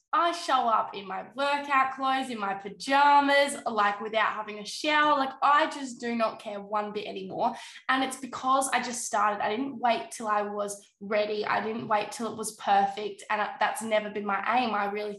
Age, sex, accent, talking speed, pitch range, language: 10-29, female, Australian, 205 wpm, 205-230 Hz, English